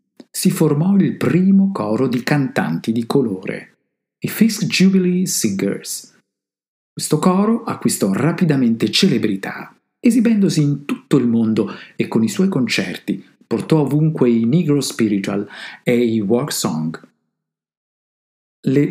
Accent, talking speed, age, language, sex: native, 120 wpm, 50-69, Italian, male